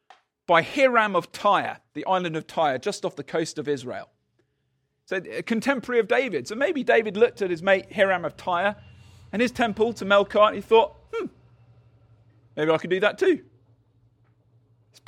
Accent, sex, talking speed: British, male, 180 wpm